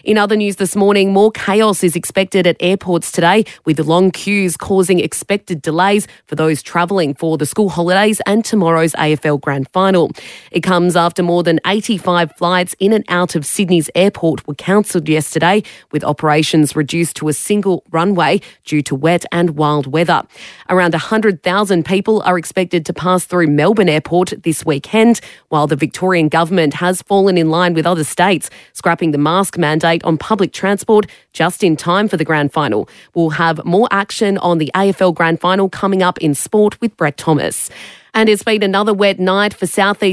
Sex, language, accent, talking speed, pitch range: female, English, Australian, 180 wpm, 160-195 Hz